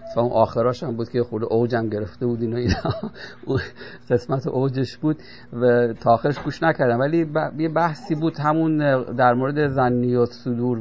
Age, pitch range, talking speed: 50-69, 115-140 Hz, 160 wpm